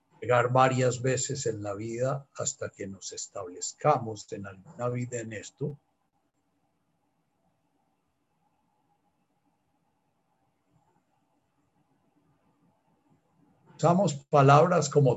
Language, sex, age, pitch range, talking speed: Spanish, male, 60-79, 130-155 Hz, 65 wpm